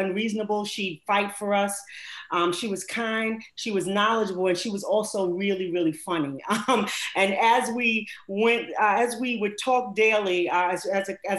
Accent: American